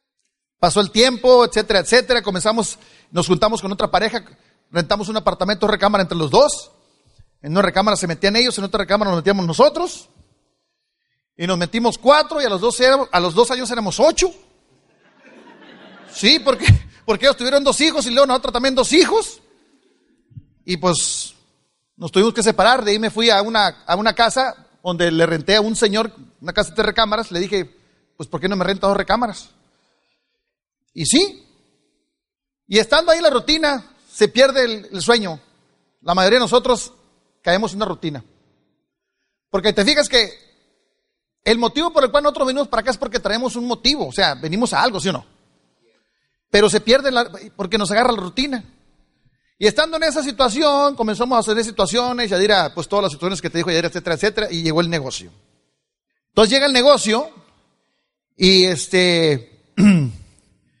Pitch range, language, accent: 185-255 Hz, Spanish, Mexican